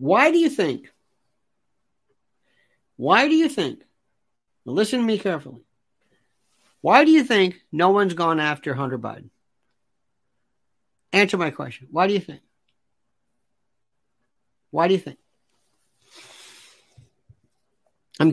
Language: English